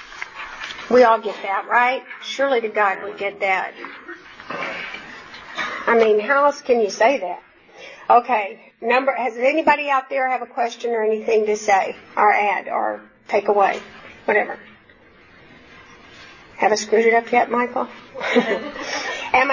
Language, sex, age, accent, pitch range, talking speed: English, female, 50-69, American, 220-280 Hz, 140 wpm